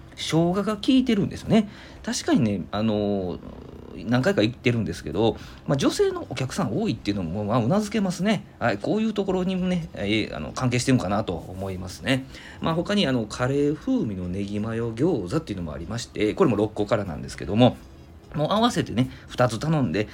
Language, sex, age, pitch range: Japanese, male, 40-59, 100-135 Hz